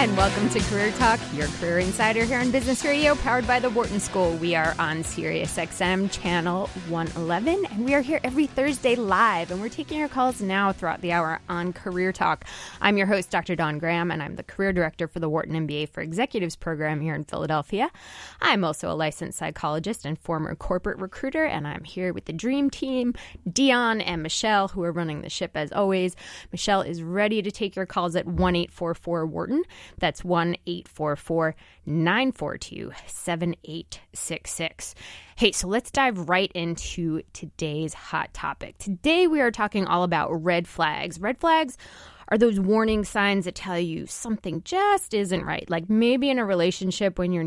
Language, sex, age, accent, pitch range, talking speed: English, female, 20-39, American, 170-230 Hz, 175 wpm